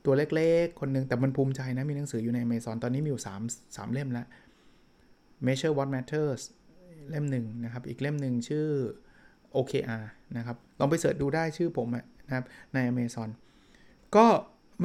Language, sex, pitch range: Thai, male, 125-150 Hz